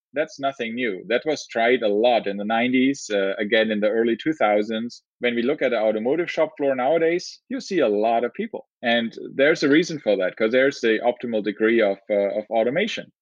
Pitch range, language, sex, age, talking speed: 105-125 Hz, English, male, 30-49, 215 wpm